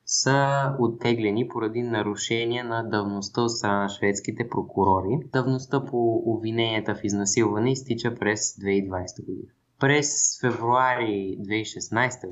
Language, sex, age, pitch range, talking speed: Bulgarian, male, 20-39, 105-130 Hz, 100 wpm